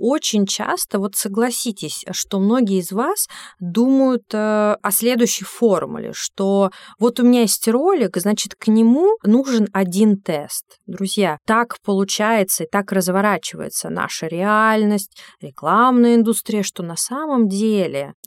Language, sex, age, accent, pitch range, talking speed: Russian, female, 20-39, native, 185-230 Hz, 125 wpm